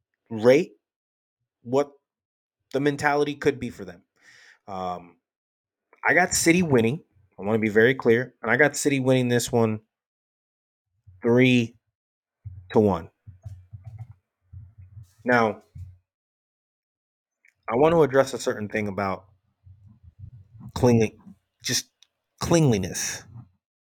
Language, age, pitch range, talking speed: English, 30-49, 100-125 Hz, 105 wpm